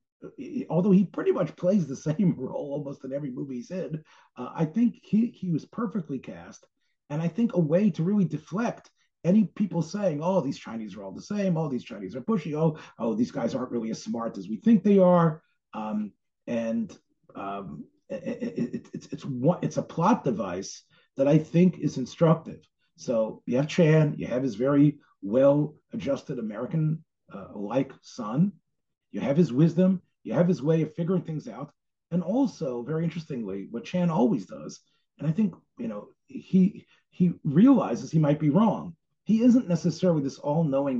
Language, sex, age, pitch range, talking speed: English, male, 40-59, 145-190 Hz, 185 wpm